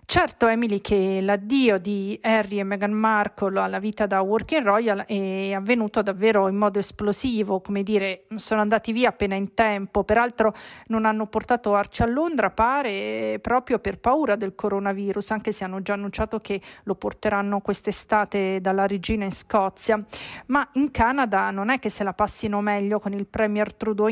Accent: native